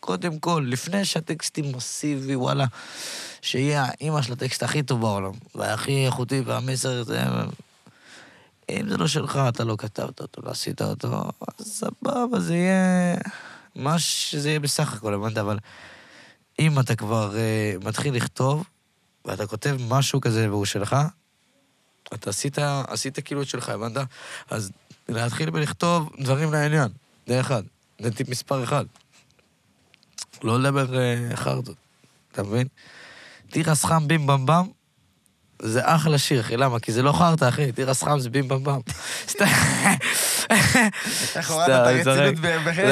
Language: Hebrew